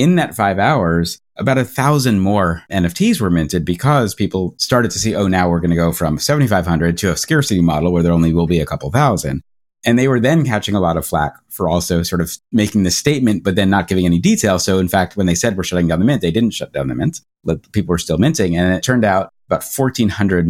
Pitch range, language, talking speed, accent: 85-110 Hz, English, 250 wpm, American